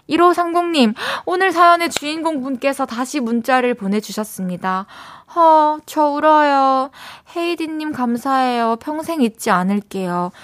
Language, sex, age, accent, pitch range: Korean, female, 20-39, native, 180-260 Hz